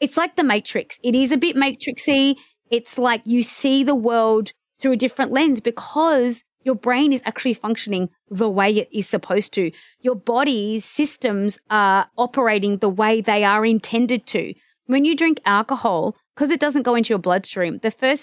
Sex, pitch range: female, 210-265 Hz